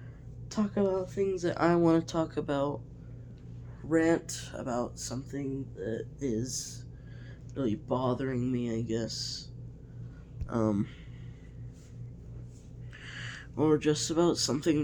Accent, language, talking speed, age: American, English, 95 wpm, 20-39